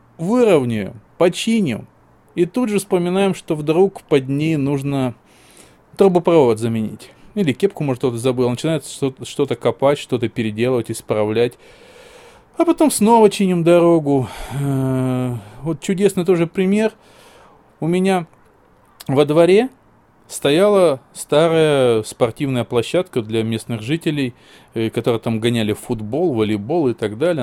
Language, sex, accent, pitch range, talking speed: Russian, male, native, 120-185 Hz, 115 wpm